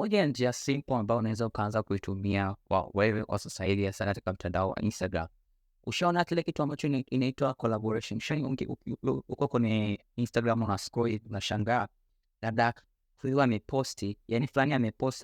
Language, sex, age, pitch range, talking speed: Swahili, male, 20-39, 95-110 Hz, 115 wpm